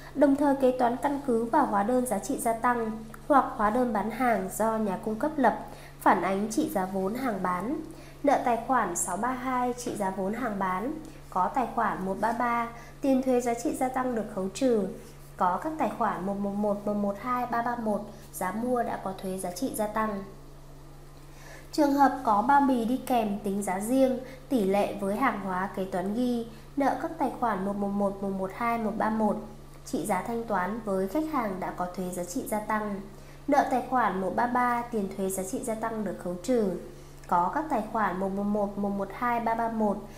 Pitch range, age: 200-255 Hz, 20-39